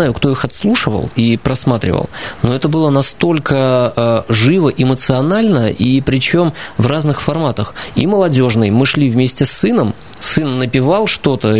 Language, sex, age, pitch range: Russian, male, 20-39, 125-155 Hz